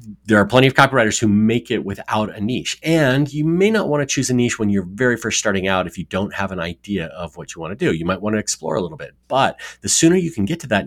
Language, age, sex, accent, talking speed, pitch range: English, 30-49, male, American, 300 wpm, 85-110 Hz